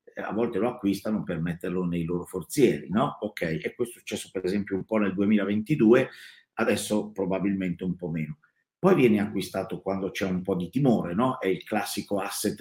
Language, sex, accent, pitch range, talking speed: Italian, male, native, 95-115 Hz, 190 wpm